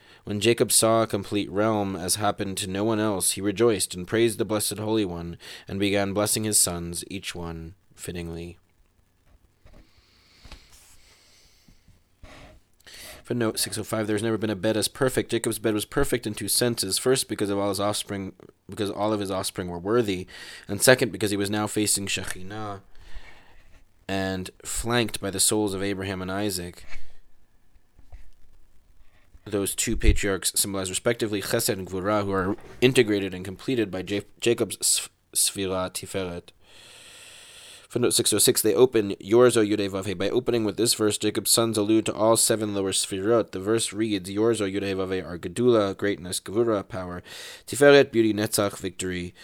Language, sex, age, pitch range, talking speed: English, male, 20-39, 90-110 Hz, 155 wpm